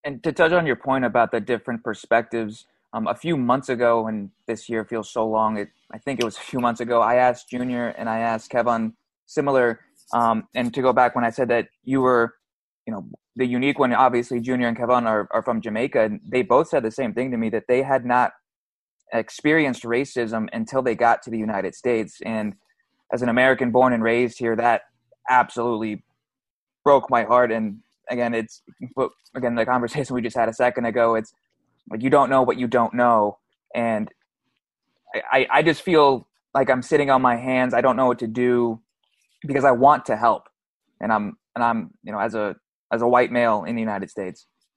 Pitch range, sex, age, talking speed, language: 115-125 Hz, male, 20-39, 205 wpm, English